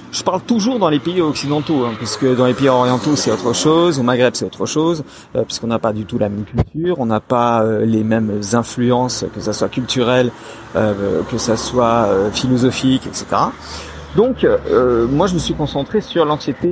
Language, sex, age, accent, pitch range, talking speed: French, male, 40-59, French, 115-145 Hz, 205 wpm